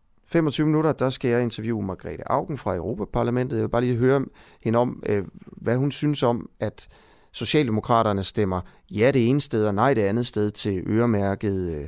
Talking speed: 175 wpm